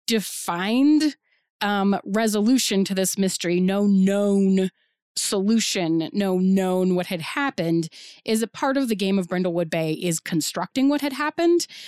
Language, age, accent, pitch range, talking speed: English, 30-49, American, 185-235 Hz, 140 wpm